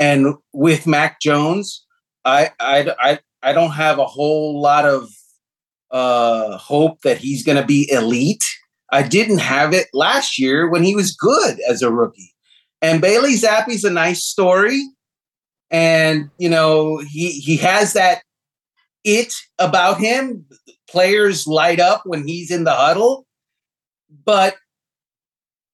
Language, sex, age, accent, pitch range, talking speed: English, male, 30-49, American, 145-195 Hz, 140 wpm